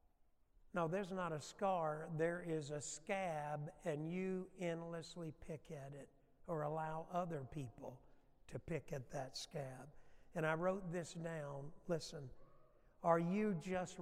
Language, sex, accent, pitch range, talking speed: English, male, American, 160-205 Hz, 140 wpm